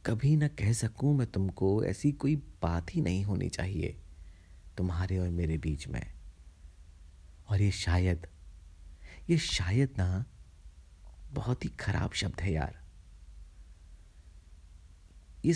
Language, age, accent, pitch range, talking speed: Hindi, 30-49, native, 80-95 Hz, 120 wpm